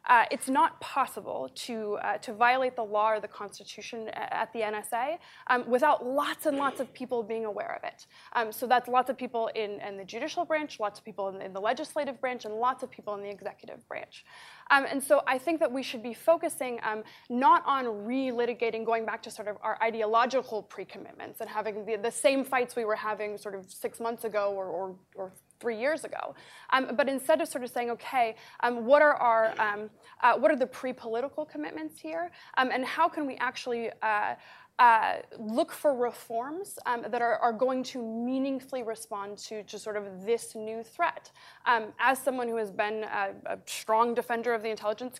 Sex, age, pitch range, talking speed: female, 20-39, 220-265 Hz, 205 wpm